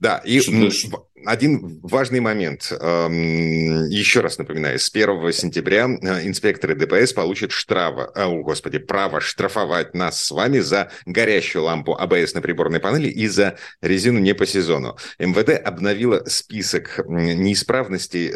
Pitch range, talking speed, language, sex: 95-125 Hz, 130 wpm, Russian, male